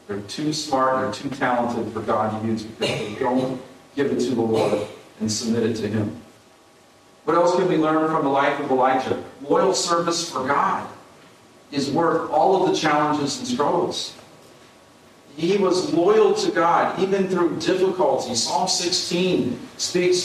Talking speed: 165 wpm